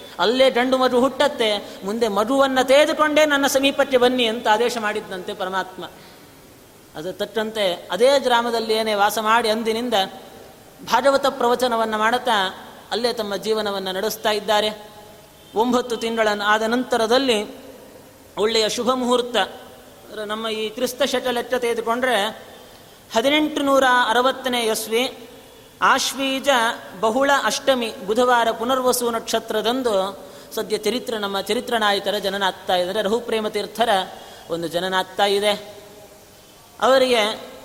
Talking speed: 95 wpm